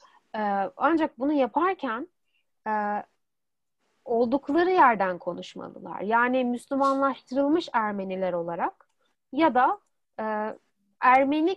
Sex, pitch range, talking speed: female, 230-300 Hz, 65 wpm